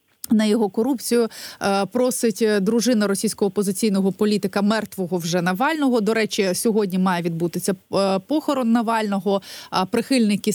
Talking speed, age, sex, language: 110 wpm, 30-49, female, Ukrainian